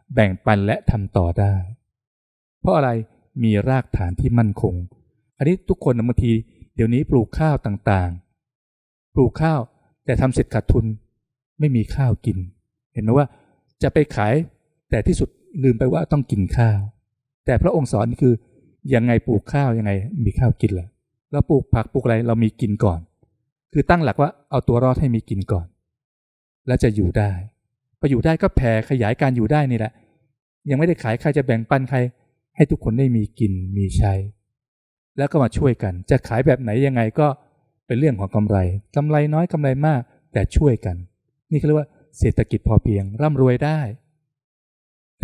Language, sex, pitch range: Thai, male, 105-140 Hz